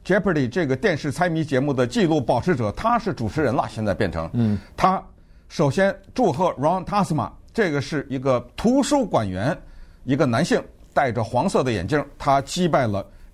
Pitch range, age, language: 95-145 Hz, 50-69, Chinese